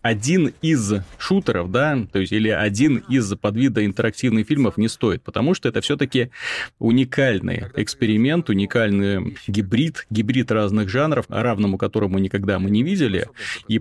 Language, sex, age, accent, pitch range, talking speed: Russian, male, 30-49, native, 105-130 Hz, 140 wpm